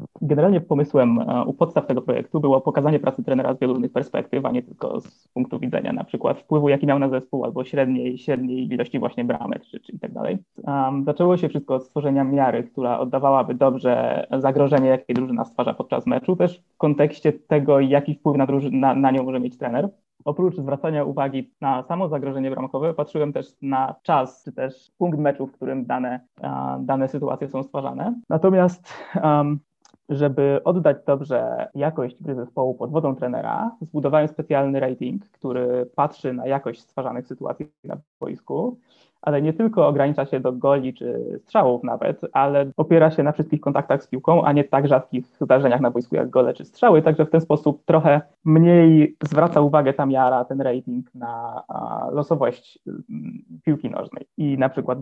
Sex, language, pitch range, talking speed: male, Polish, 130-155 Hz, 175 wpm